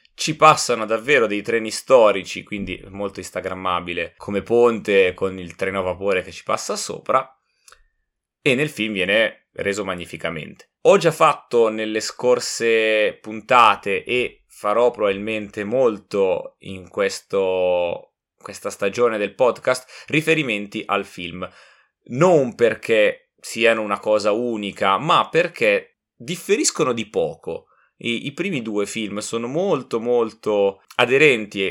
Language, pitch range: Italian, 100-165 Hz